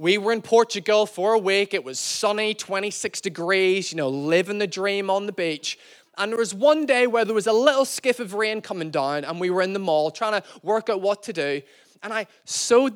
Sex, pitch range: male, 180-235 Hz